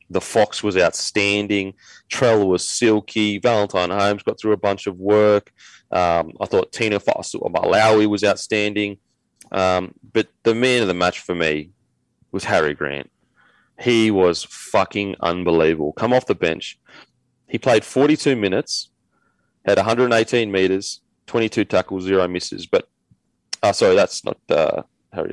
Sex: male